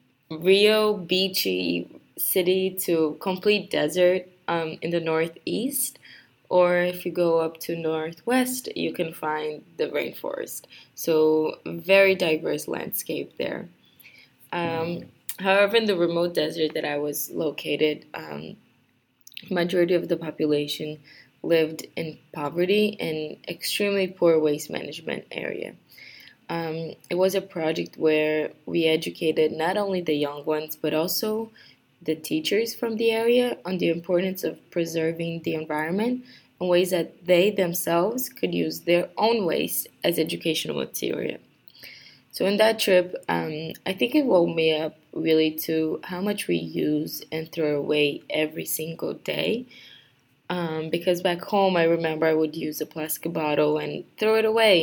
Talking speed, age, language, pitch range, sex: 140 wpm, 20-39, English, 155-190 Hz, female